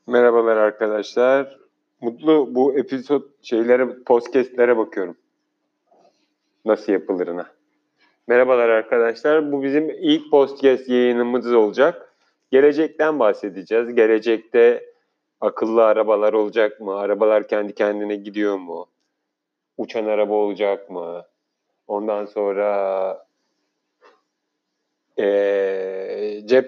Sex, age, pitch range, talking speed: male, 40-59, 110-135 Hz, 85 wpm